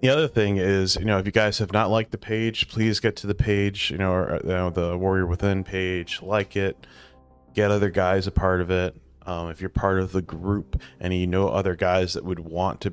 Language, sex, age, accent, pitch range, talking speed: English, male, 30-49, American, 85-100 Hz, 235 wpm